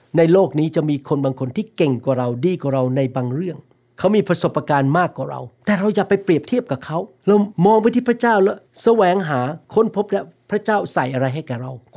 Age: 60-79